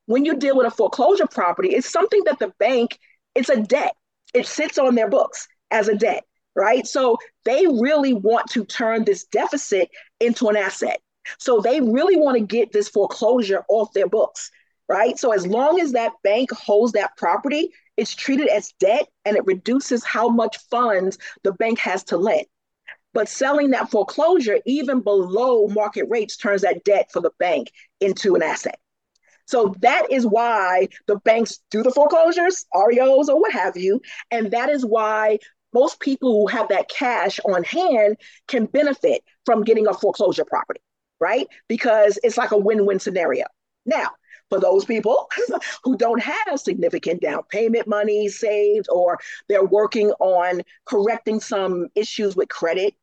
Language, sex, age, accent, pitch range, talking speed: English, female, 40-59, American, 210-275 Hz, 170 wpm